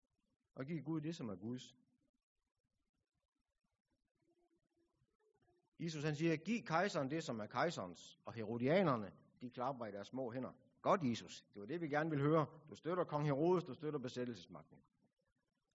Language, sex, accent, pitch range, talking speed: Danish, male, native, 125-165 Hz, 150 wpm